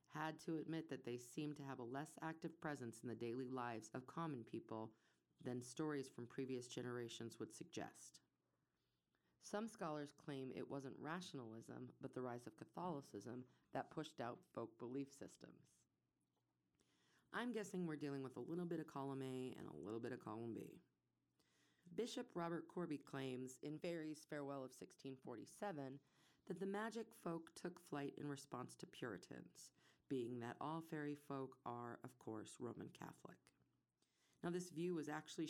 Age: 30-49